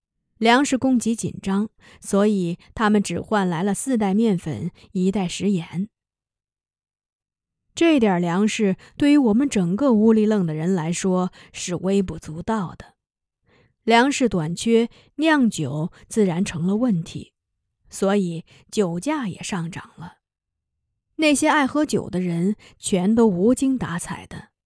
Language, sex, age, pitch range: Chinese, female, 20-39, 175-225 Hz